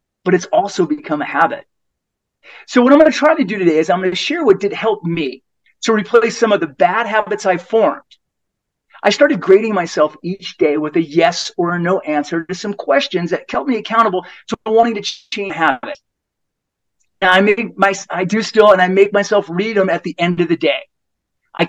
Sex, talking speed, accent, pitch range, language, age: male, 215 wpm, American, 175-225 Hz, English, 40-59